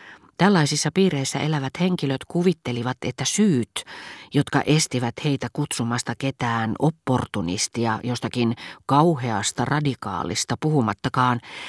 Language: Finnish